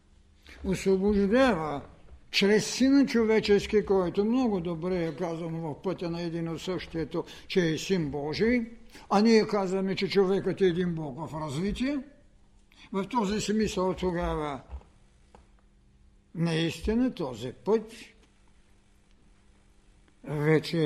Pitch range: 125-195 Hz